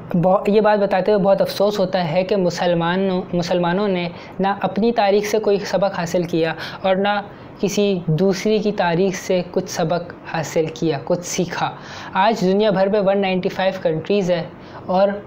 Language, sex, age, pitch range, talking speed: Urdu, female, 20-39, 175-205 Hz, 165 wpm